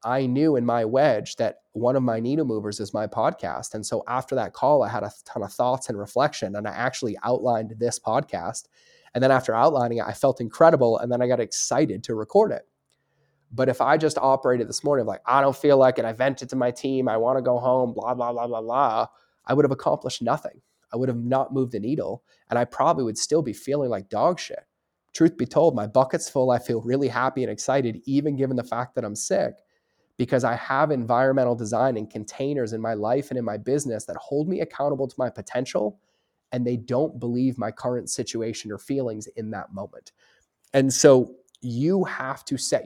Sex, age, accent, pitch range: male, 20-39, American, 115-135 Hz